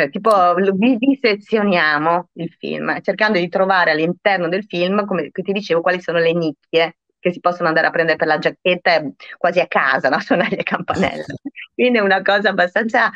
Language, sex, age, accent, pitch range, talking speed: Italian, female, 30-49, native, 160-195 Hz, 170 wpm